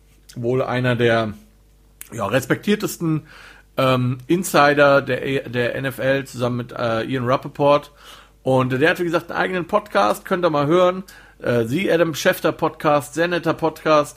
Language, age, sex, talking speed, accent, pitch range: German, 40-59, male, 155 wpm, German, 115-150 Hz